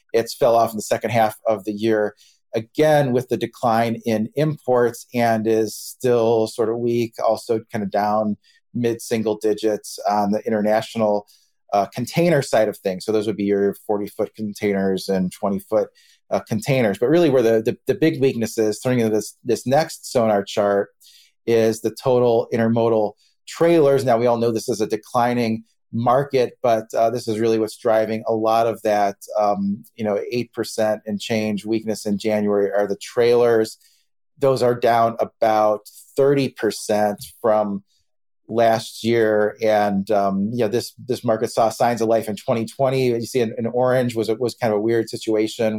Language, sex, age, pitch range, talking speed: English, male, 30-49, 105-120 Hz, 175 wpm